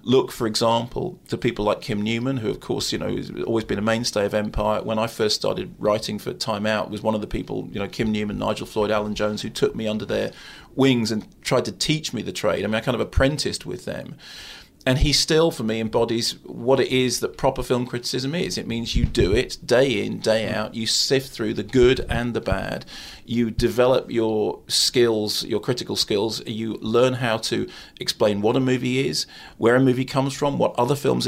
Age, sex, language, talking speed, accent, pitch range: 40-59, male, English, 225 wpm, British, 110-130 Hz